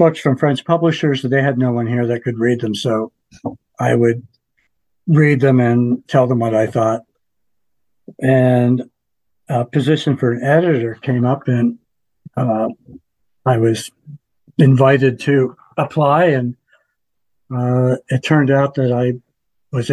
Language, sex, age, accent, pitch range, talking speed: English, male, 60-79, American, 120-140 Hz, 145 wpm